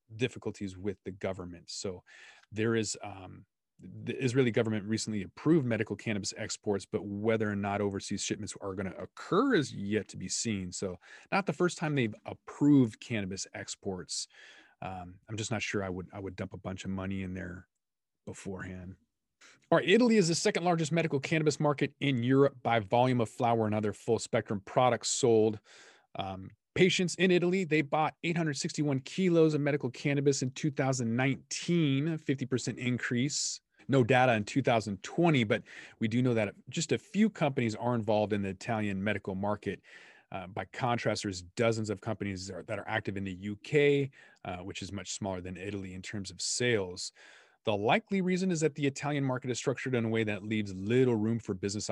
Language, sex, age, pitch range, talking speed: English, male, 30-49, 100-140 Hz, 185 wpm